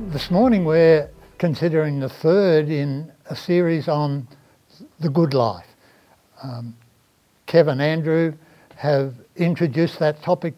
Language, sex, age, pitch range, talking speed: English, male, 60-79, 140-170 Hz, 115 wpm